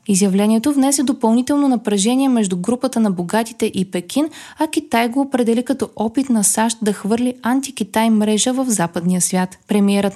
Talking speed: 155 wpm